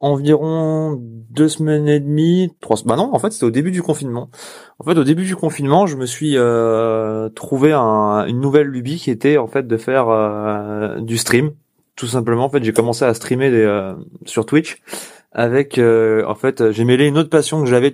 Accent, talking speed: French, 205 wpm